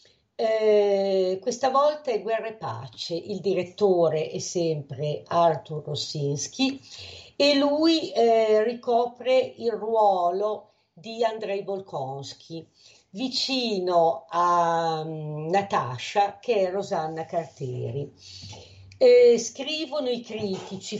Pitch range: 155-230 Hz